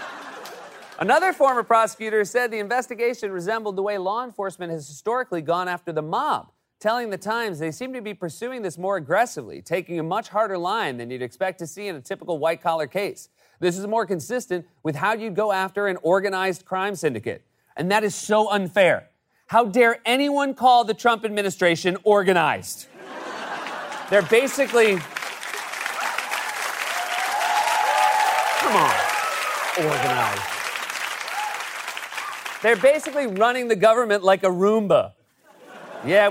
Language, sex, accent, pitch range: English, male, American, 175-230 Hz